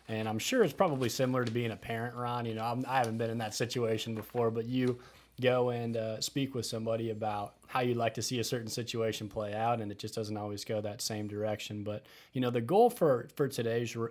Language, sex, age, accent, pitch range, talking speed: English, male, 30-49, American, 110-130 Hz, 245 wpm